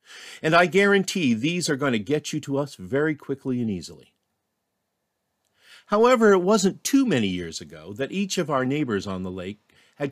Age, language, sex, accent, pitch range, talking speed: 50-69, English, male, American, 115-175 Hz, 185 wpm